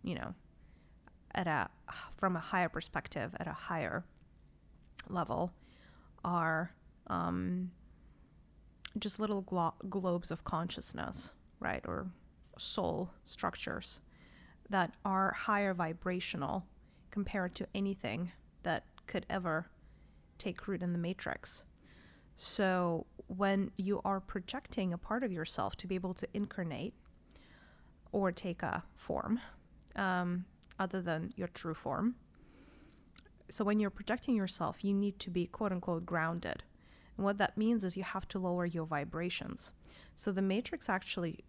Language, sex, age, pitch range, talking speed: English, female, 30-49, 160-200 Hz, 130 wpm